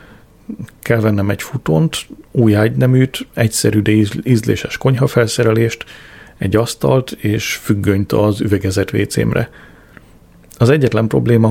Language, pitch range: Hungarian, 100-115 Hz